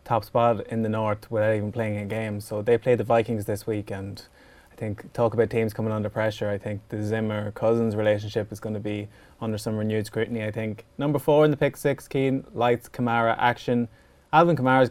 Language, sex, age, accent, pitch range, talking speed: English, male, 20-39, Irish, 110-125 Hz, 215 wpm